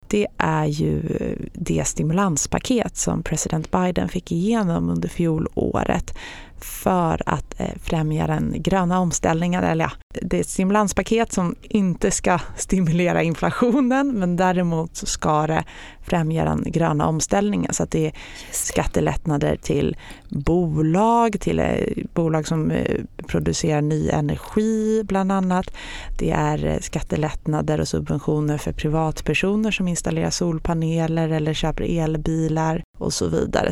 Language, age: Swedish, 30-49